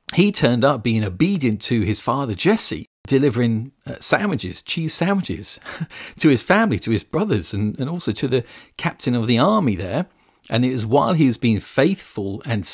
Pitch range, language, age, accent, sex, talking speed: 110-165 Hz, English, 40-59, British, male, 180 wpm